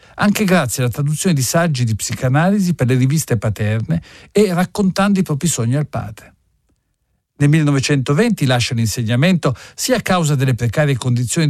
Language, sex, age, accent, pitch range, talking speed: Italian, male, 50-69, native, 120-185 Hz, 150 wpm